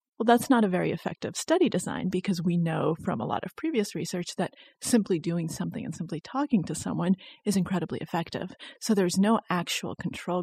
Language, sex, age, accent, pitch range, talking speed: English, female, 30-49, American, 170-200 Hz, 195 wpm